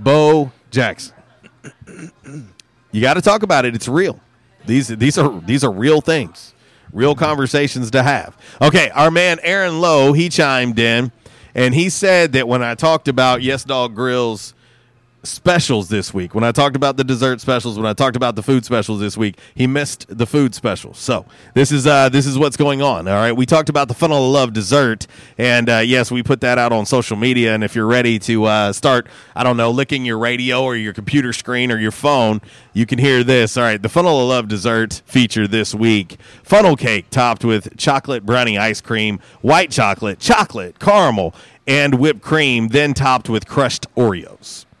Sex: male